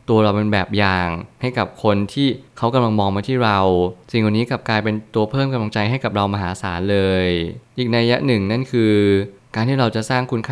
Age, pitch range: 20-39, 100-120 Hz